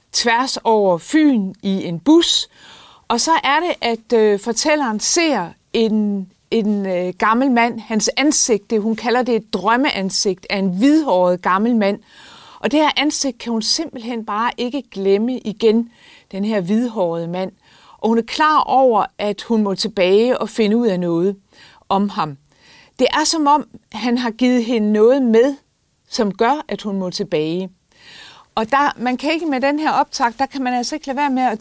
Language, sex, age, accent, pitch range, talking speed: Danish, female, 40-59, native, 210-270 Hz, 180 wpm